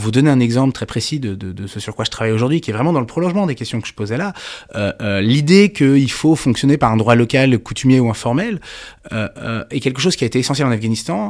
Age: 30-49